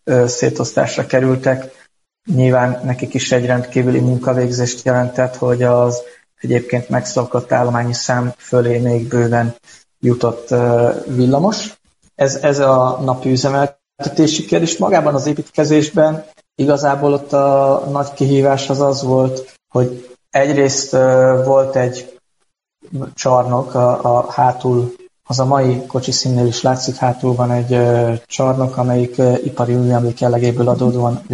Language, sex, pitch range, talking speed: Hungarian, male, 125-135 Hz, 115 wpm